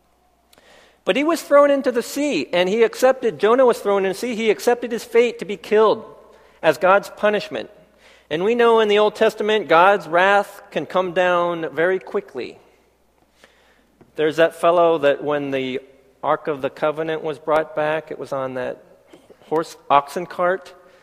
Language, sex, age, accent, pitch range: Korean, male, 40-59, American, 145-200 Hz